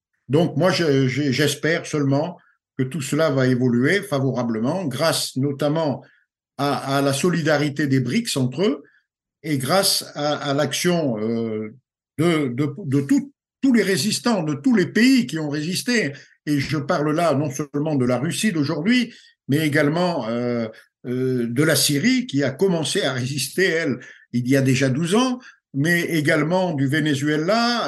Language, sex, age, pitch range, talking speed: French, male, 50-69, 130-175 Hz, 140 wpm